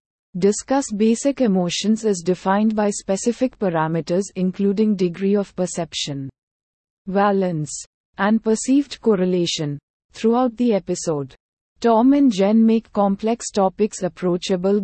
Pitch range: 175-225 Hz